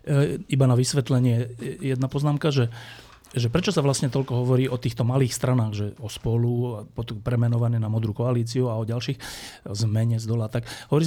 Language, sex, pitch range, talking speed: Slovak, male, 120-145 Hz, 180 wpm